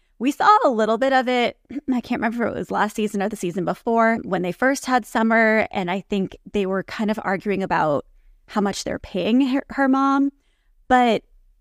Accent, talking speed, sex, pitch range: American, 210 wpm, female, 195-255 Hz